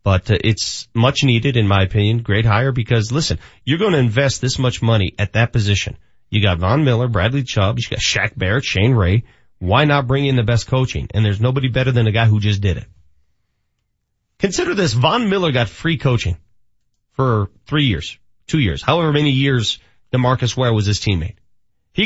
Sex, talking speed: male, 200 wpm